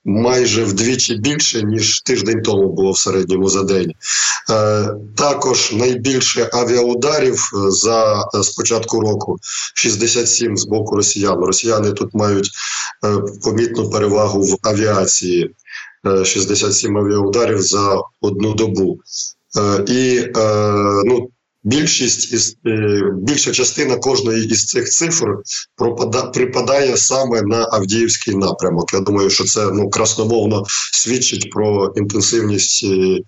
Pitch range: 100-120 Hz